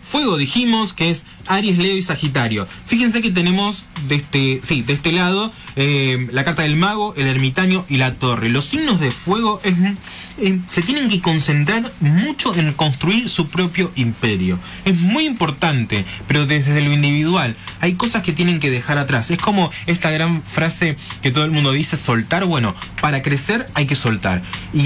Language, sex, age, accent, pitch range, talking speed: Spanish, male, 20-39, Argentinian, 125-180 Hz, 175 wpm